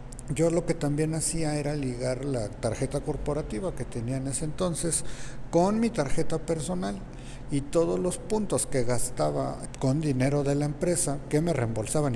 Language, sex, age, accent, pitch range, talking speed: Spanish, male, 50-69, Mexican, 125-165 Hz, 165 wpm